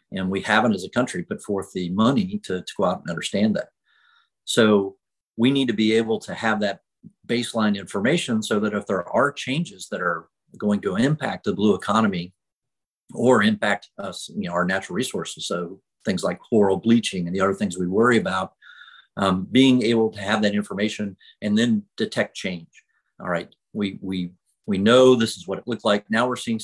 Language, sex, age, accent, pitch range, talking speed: English, male, 50-69, American, 95-115 Hz, 200 wpm